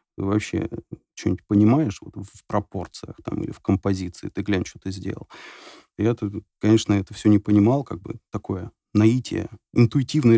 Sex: male